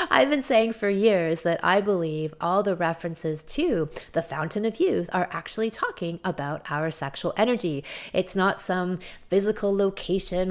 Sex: female